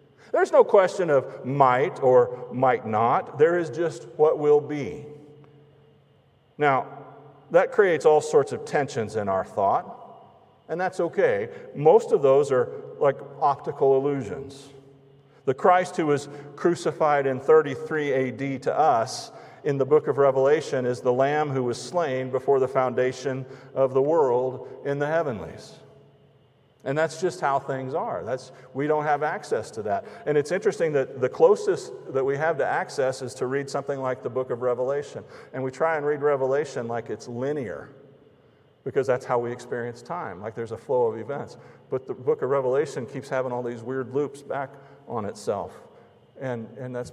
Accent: American